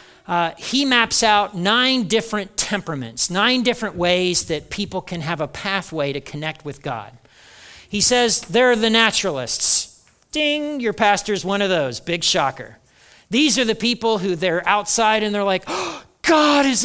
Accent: American